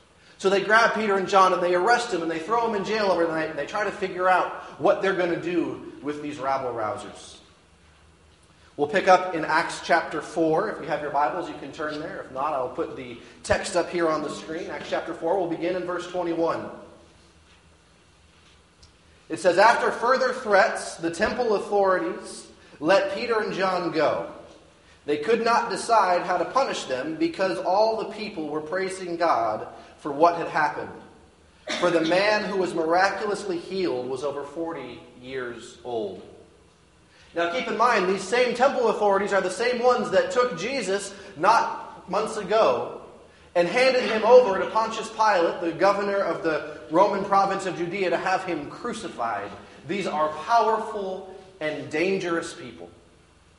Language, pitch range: English, 150-195 Hz